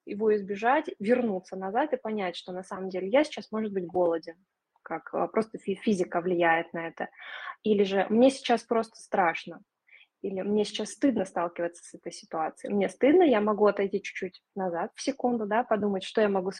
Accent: native